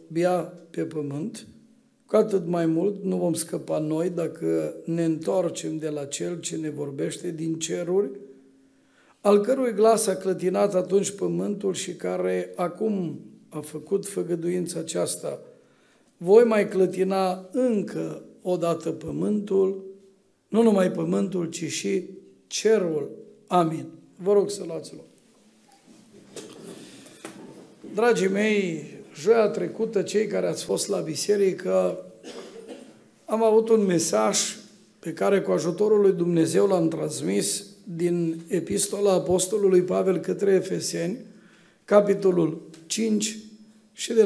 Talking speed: 120 wpm